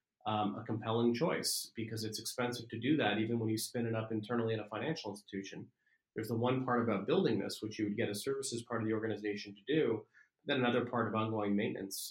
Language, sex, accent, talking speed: English, male, American, 230 wpm